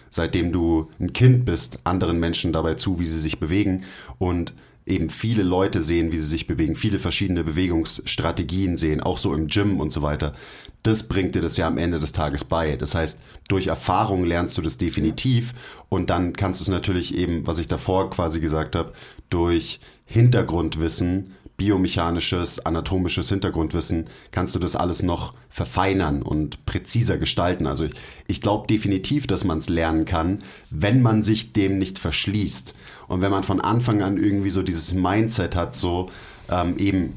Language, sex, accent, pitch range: German, male, German, 85-100 Hz